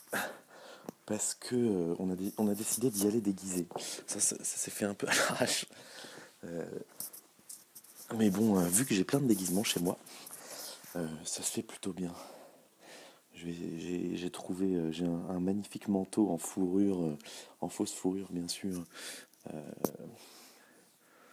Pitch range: 85-100 Hz